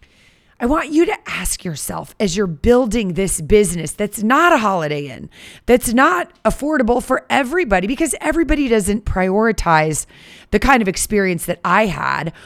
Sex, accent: female, American